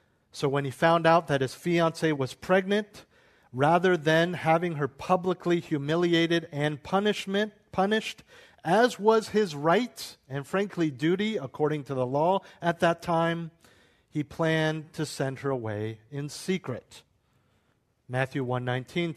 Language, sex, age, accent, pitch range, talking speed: English, male, 50-69, American, 125-165 Hz, 135 wpm